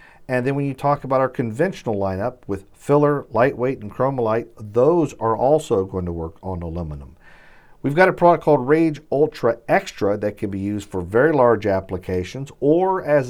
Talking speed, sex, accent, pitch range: 180 wpm, male, American, 95-125 Hz